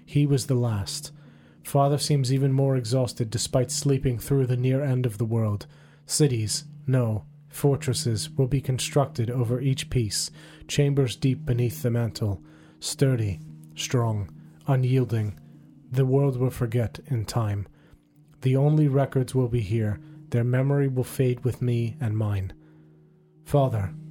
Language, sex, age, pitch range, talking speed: English, male, 30-49, 120-145 Hz, 140 wpm